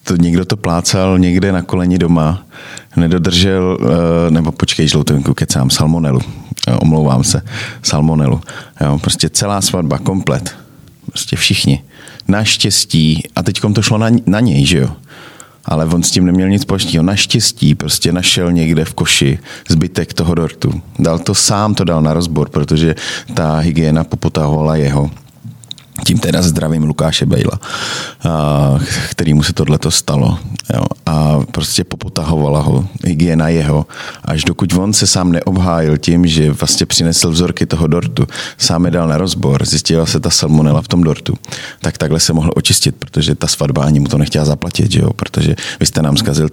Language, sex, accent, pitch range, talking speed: Czech, male, native, 75-90 Hz, 155 wpm